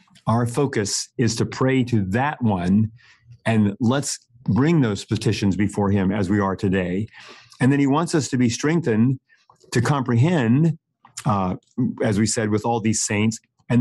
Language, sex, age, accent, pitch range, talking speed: English, male, 40-59, American, 110-130 Hz, 165 wpm